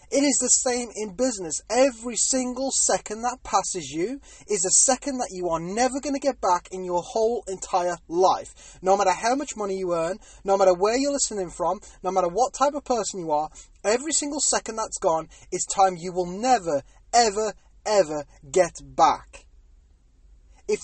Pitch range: 180-250 Hz